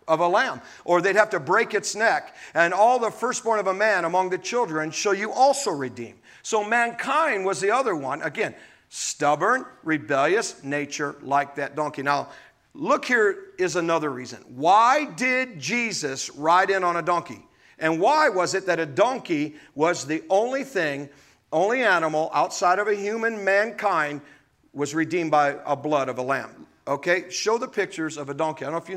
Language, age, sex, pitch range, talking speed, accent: English, 50-69, male, 155-220 Hz, 185 wpm, American